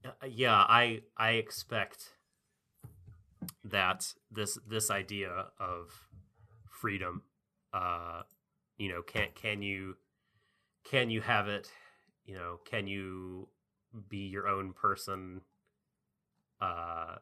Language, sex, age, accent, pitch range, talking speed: English, male, 30-49, American, 90-110 Hz, 100 wpm